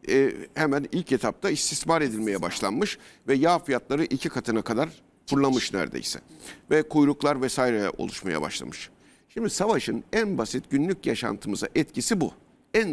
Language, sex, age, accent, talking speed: Turkish, male, 60-79, native, 135 wpm